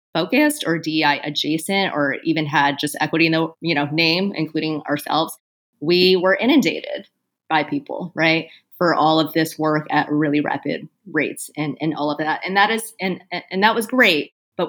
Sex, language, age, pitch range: female, English, 30-49, 155-195 Hz